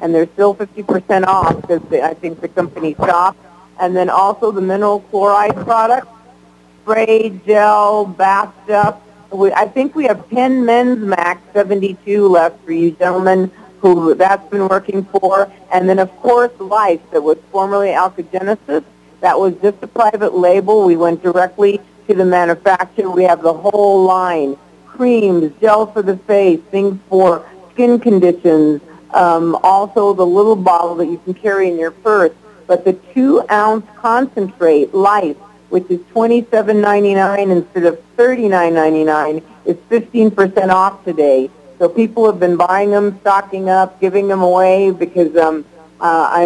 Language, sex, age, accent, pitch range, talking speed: English, female, 50-69, American, 175-205 Hz, 155 wpm